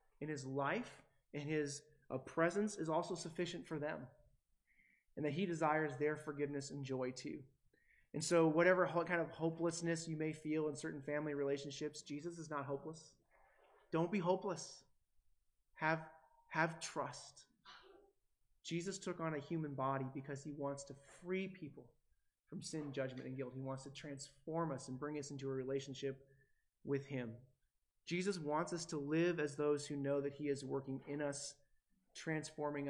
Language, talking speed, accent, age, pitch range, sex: English, 165 wpm, American, 30-49, 135-160 Hz, male